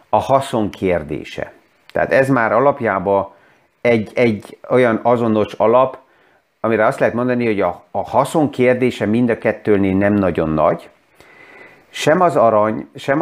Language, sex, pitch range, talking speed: Hungarian, male, 105-130 Hz, 140 wpm